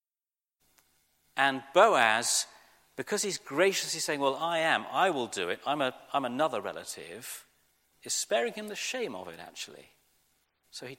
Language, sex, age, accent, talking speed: English, male, 40-59, British, 145 wpm